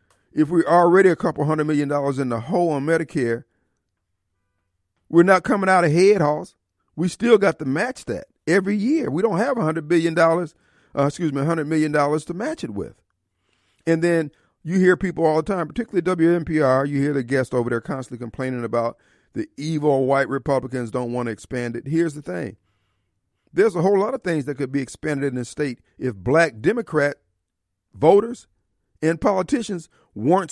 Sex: male